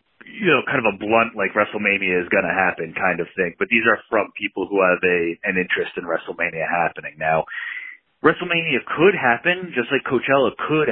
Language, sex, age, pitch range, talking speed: English, male, 30-49, 95-125 Hz, 190 wpm